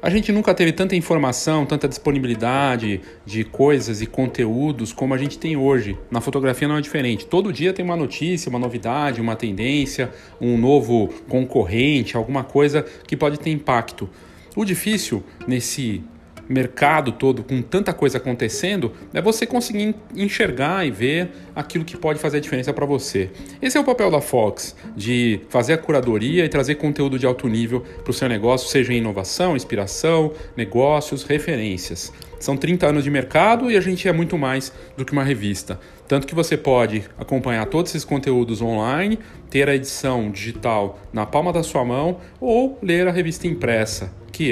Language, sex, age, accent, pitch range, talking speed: Portuguese, male, 40-59, Brazilian, 115-155 Hz, 170 wpm